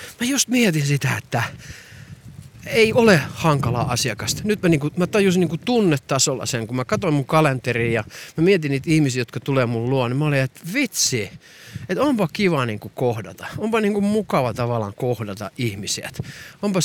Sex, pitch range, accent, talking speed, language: male, 135-200 Hz, native, 170 wpm, Finnish